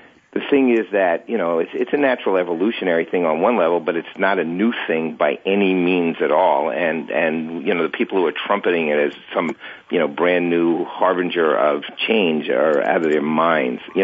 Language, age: English, 50-69